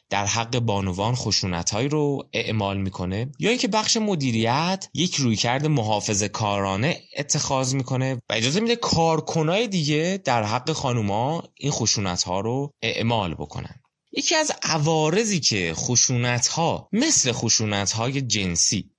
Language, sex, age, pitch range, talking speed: Persian, male, 20-39, 115-175 Hz, 125 wpm